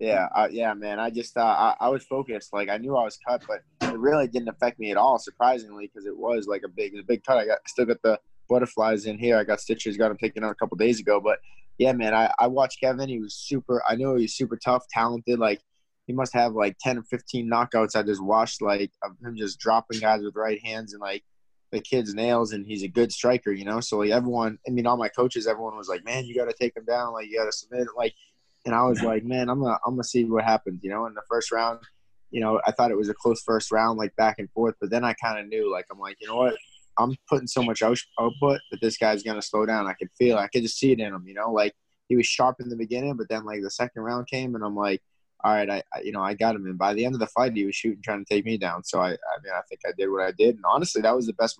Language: English